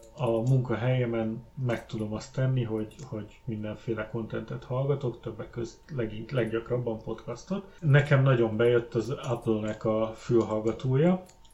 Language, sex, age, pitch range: Hungarian, male, 30-49, 110-130 Hz